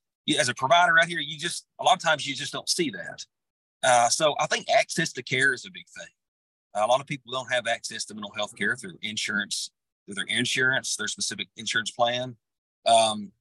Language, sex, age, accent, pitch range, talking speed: English, male, 40-59, American, 120-155 Hz, 230 wpm